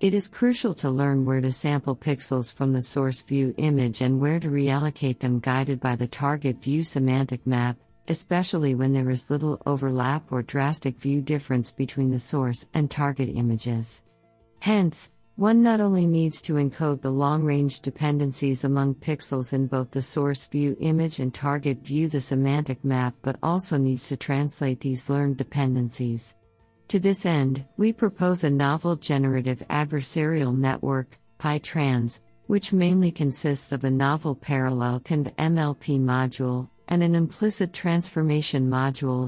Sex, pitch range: female, 130-150 Hz